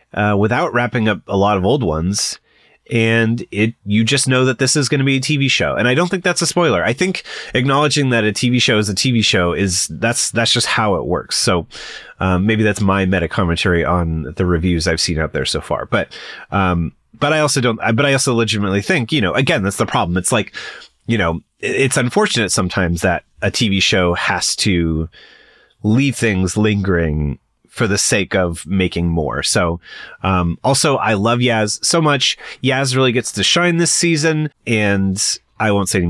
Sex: male